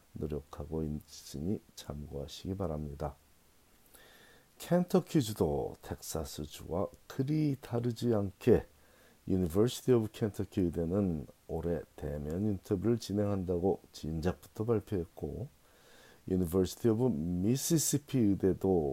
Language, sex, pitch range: Korean, male, 80-110 Hz